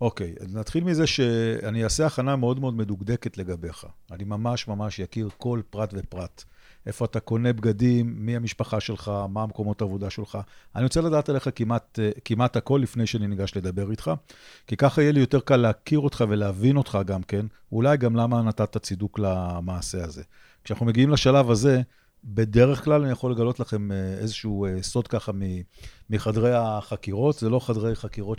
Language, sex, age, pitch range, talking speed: Hebrew, male, 50-69, 100-125 Hz, 170 wpm